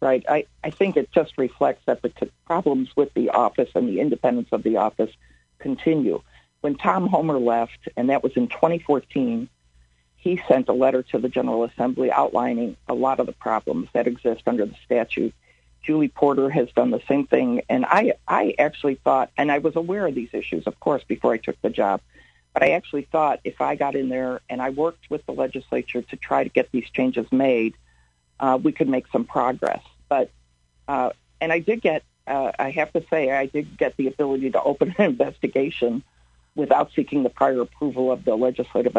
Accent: American